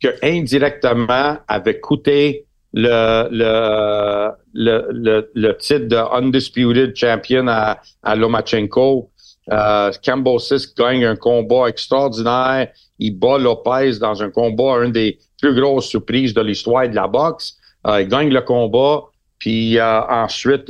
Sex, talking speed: male, 135 wpm